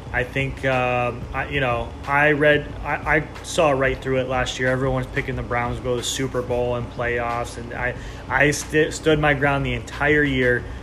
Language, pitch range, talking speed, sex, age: English, 115-150 Hz, 210 wpm, male, 20-39